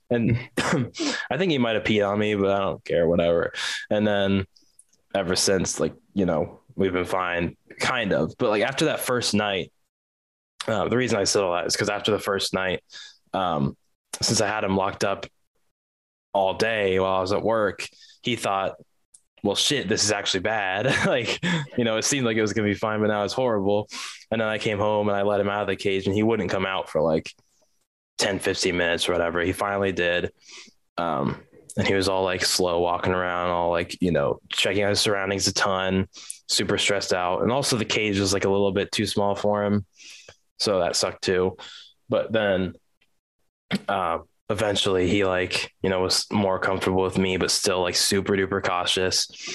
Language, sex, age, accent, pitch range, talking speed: English, male, 10-29, American, 95-105 Hz, 205 wpm